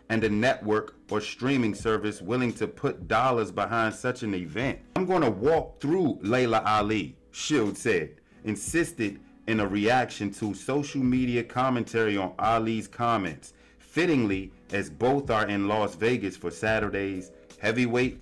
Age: 30-49